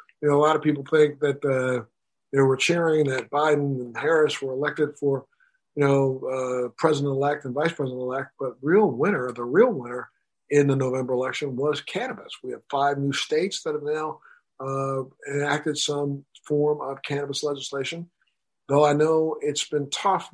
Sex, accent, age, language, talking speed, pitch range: male, American, 50-69, English, 175 wpm, 130-155 Hz